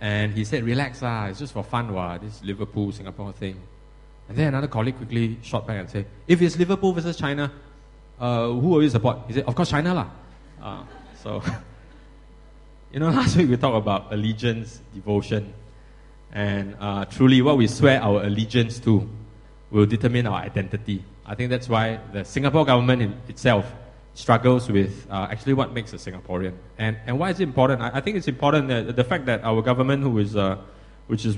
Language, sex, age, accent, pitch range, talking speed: English, male, 20-39, Malaysian, 105-135 Hz, 185 wpm